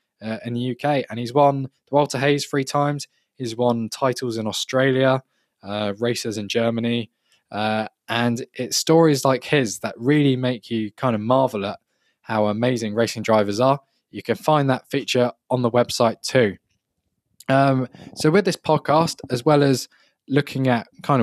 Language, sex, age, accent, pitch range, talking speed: English, male, 10-29, British, 115-145 Hz, 170 wpm